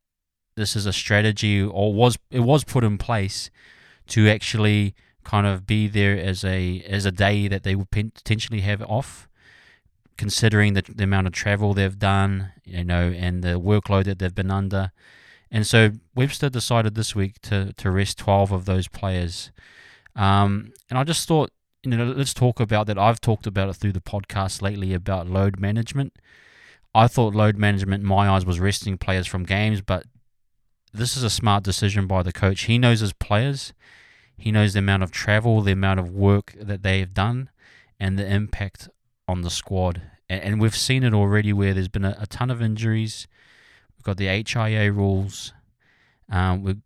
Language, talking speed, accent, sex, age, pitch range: English, 185 wpm, Australian, male, 20-39, 95-110 Hz